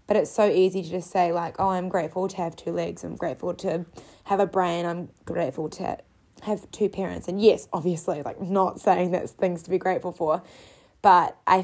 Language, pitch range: English, 175-205 Hz